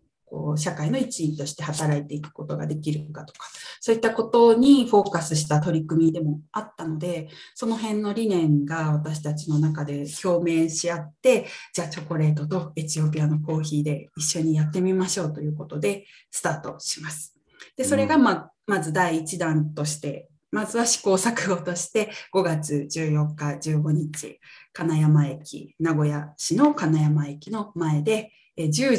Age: 20-39